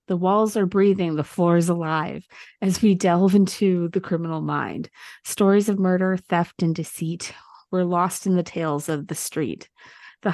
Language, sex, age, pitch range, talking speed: English, female, 30-49, 170-195 Hz, 175 wpm